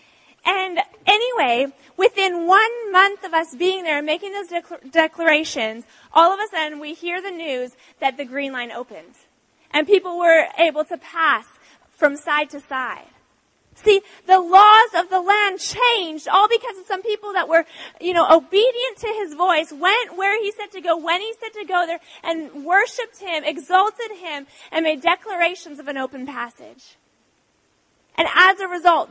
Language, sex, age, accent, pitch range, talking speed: English, female, 30-49, American, 315-405 Hz, 175 wpm